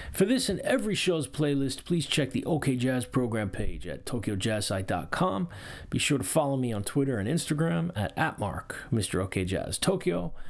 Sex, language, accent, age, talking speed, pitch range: male, English, American, 30-49, 175 wpm, 100-140 Hz